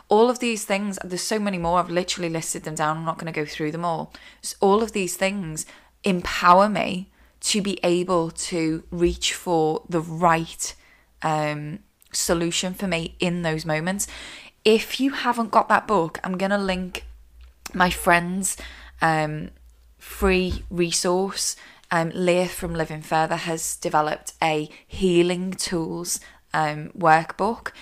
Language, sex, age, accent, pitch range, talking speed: English, female, 20-39, British, 160-195 Hz, 150 wpm